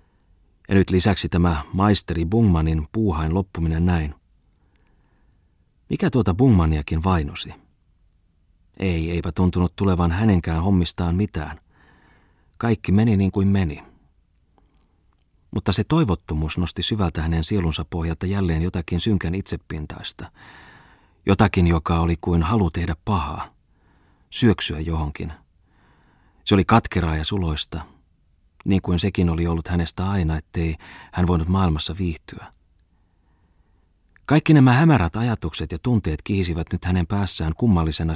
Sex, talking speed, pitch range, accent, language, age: male, 115 wpm, 80-95 Hz, native, Finnish, 30-49